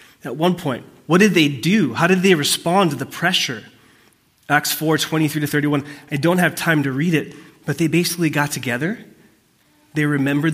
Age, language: 20-39, English